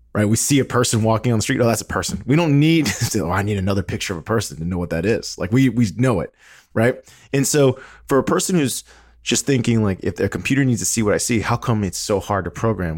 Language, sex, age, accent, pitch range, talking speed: English, male, 20-39, American, 90-120 Hz, 280 wpm